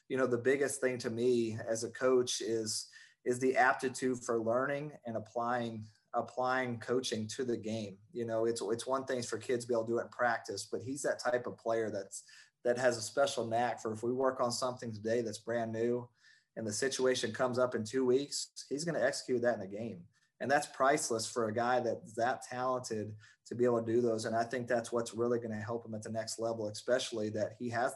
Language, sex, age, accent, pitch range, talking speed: English, male, 30-49, American, 115-125 Hz, 235 wpm